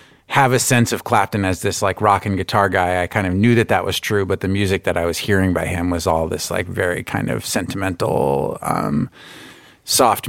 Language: English